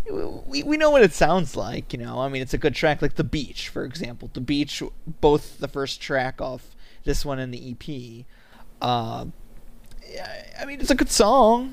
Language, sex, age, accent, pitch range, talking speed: English, male, 20-39, American, 125-150 Hz, 200 wpm